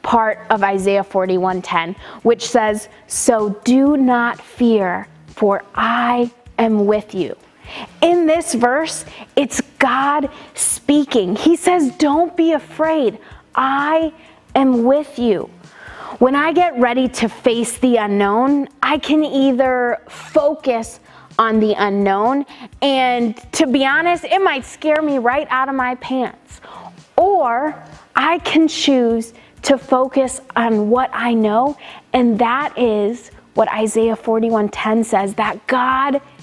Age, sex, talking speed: 30-49, female, 130 wpm